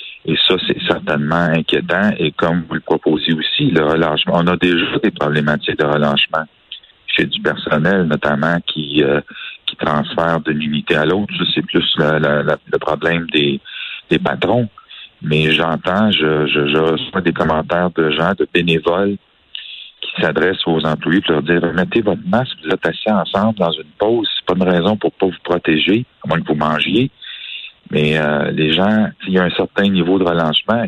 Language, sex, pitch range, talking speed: French, male, 80-100 Hz, 190 wpm